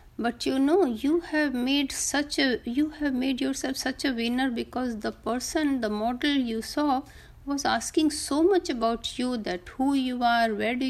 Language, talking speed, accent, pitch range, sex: Hindi, 185 wpm, native, 235-305 Hz, female